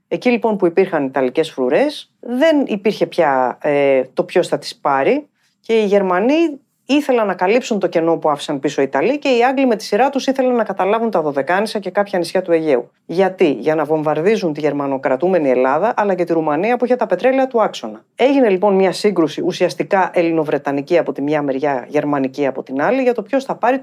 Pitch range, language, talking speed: 150-225 Hz, Greek, 205 wpm